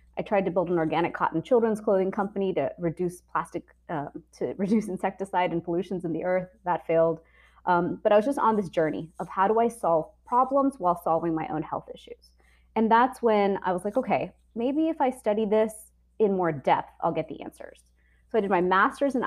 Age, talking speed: 20-39, 215 wpm